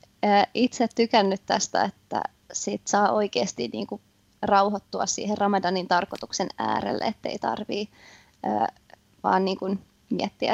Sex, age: female, 20-39